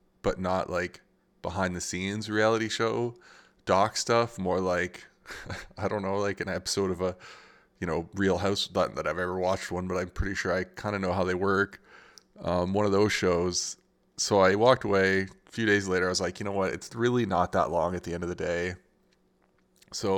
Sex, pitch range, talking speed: male, 90-100 Hz, 210 wpm